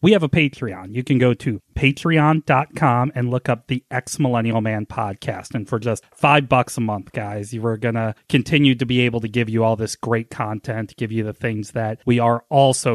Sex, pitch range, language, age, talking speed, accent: male, 115-140 Hz, English, 30-49, 220 wpm, American